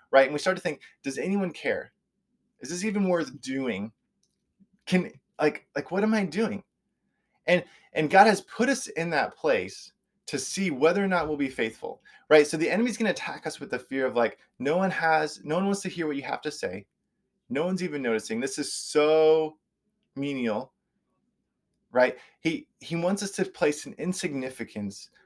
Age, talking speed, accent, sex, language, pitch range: 20-39, 190 wpm, American, male, English, 140-185 Hz